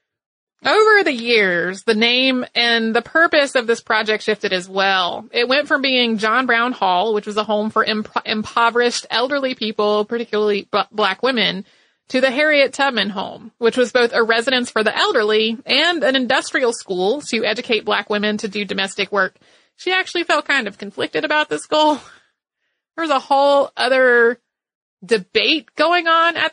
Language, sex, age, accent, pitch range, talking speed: English, female, 30-49, American, 210-260 Hz, 170 wpm